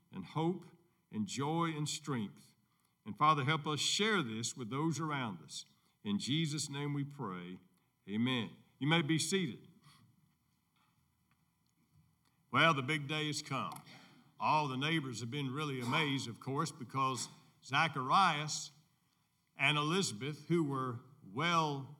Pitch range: 130-170 Hz